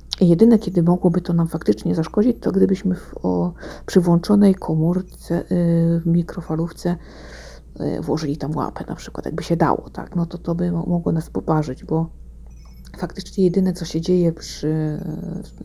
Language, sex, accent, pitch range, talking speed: Polish, female, native, 155-180 Hz, 165 wpm